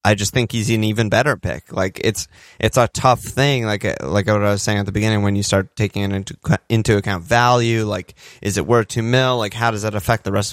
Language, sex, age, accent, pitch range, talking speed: English, male, 20-39, American, 100-120 Hz, 255 wpm